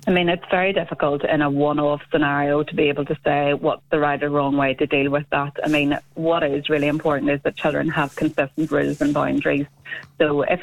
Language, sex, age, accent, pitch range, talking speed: English, female, 30-49, Irish, 150-170 Hz, 225 wpm